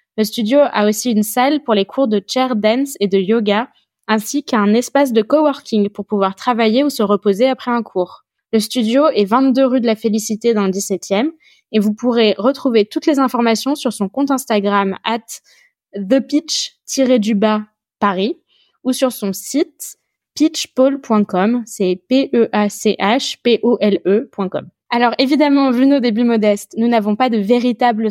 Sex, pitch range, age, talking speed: female, 210-260 Hz, 20-39, 155 wpm